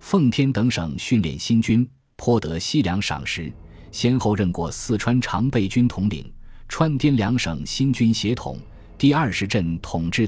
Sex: male